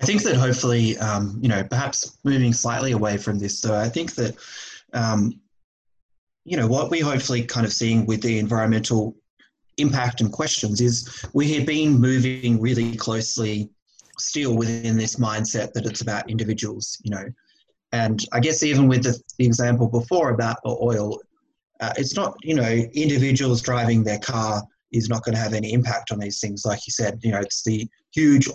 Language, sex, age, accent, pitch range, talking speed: English, male, 20-39, Australian, 110-125 Hz, 185 wpm